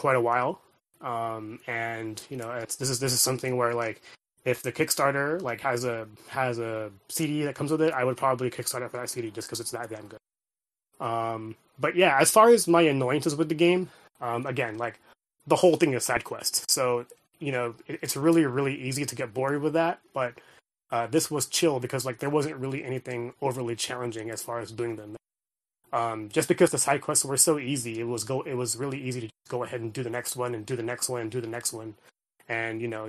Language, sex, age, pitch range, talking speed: English, male, 20-39, 115-140 Hz, 240 wpm